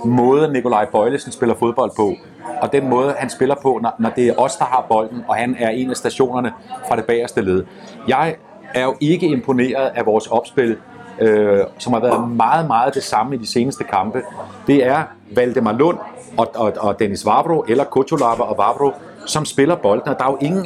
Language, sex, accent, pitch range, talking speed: Danish, male, native, 115-140 Hz, 205 wpm